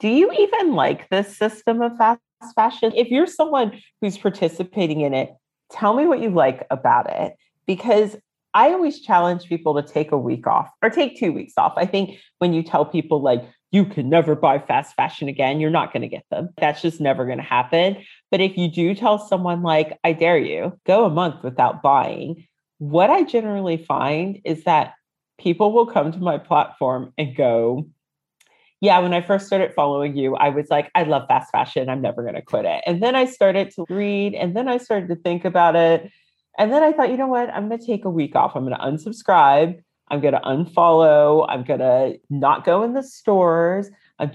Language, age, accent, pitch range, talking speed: English, 40-59, American, 150-210 Hz, 215 wpm